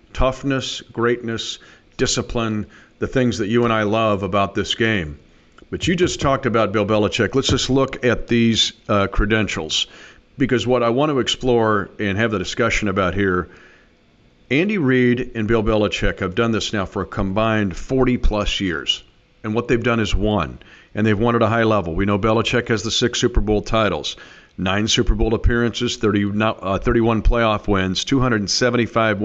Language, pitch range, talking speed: English, 100-125 Hz, 175 wpm